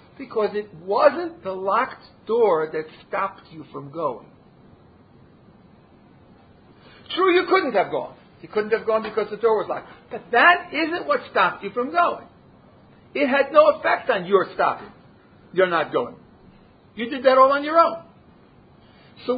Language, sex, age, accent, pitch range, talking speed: English, male, 50-69, American, 215-320 Hz, 160 wpm